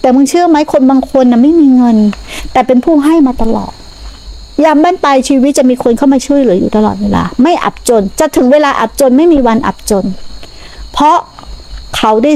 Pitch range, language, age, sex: 185-265 Hz, Thai, 60-79, female